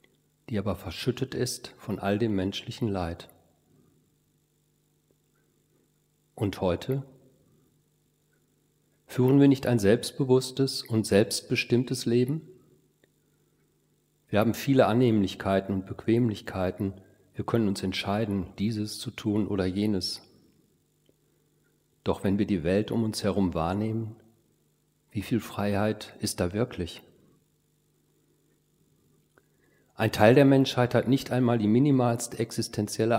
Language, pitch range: German, 100-120 Hz